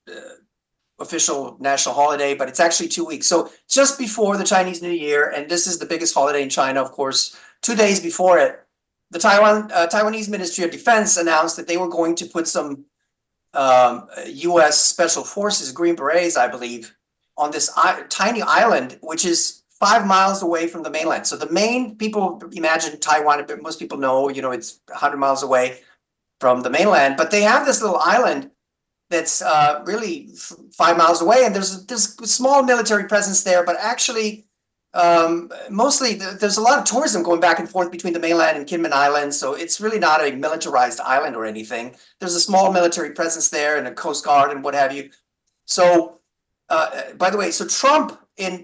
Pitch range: 150-210 Hz